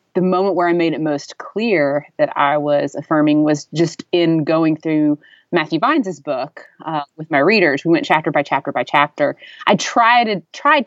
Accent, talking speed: American, 190 wpm